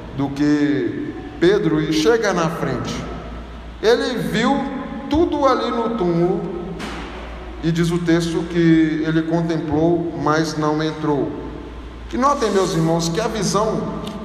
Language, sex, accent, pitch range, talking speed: Portuguese, male, Brazilian, 160-205 Hz, 125 wpm